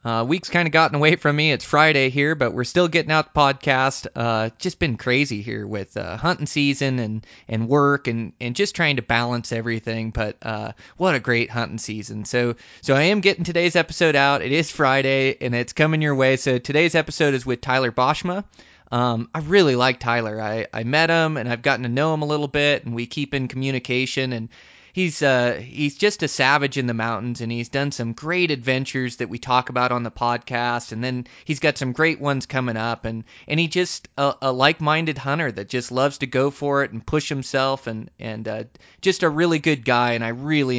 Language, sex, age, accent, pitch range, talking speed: English, male, 20-39, American, 120-150 Hz, 220 wpm